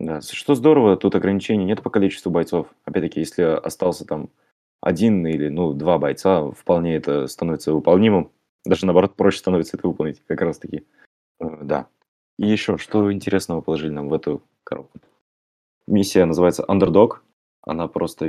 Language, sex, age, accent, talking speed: Russian, male, 20-39, native, 150 wpm